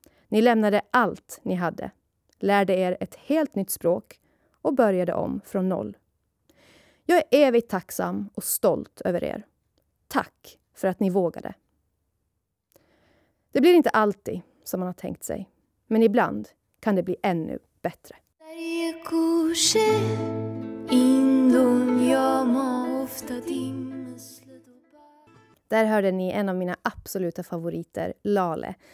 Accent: native